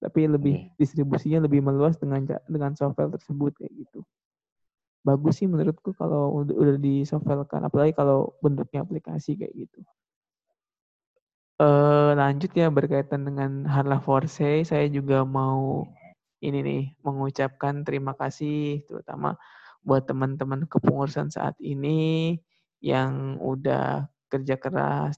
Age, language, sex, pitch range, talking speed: 20-39, Indonesian, male, 135-150 Hz, 115 wpm